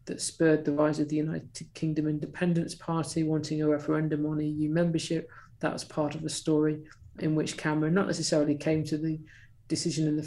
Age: 50-69